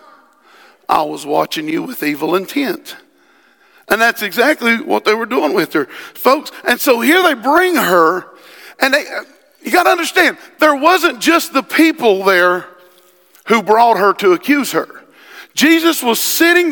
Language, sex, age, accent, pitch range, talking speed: English, male, 50-69, American, 210-315 Hz, 160 wpm